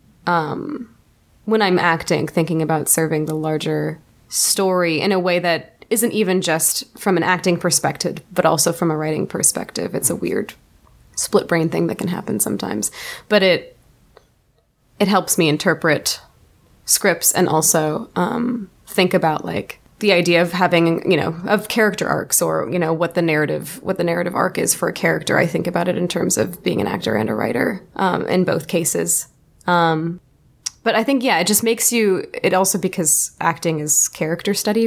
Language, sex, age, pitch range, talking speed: English, female, 20-39, 160-195 Hz, 180 wpm